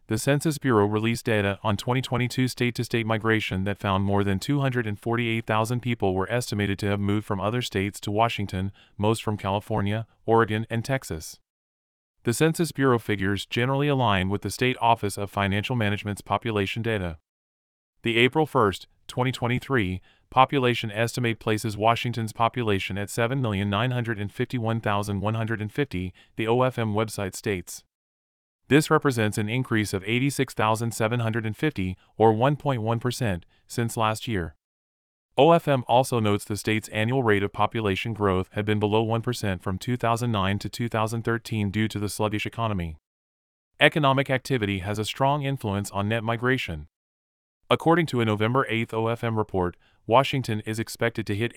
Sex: male